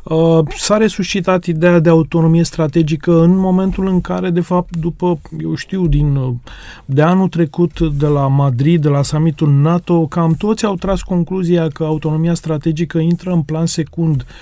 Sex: male